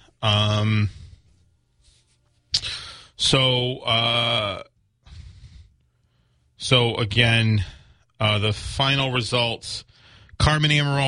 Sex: male